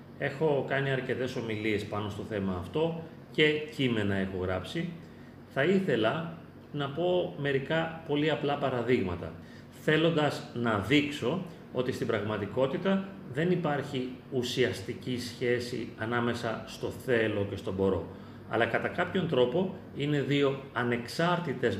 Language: Greek